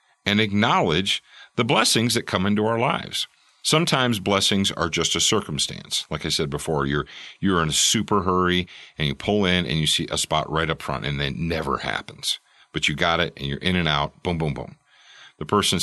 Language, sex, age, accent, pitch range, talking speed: English, male, 40-59, American, 80-110 Hz, 210 wpm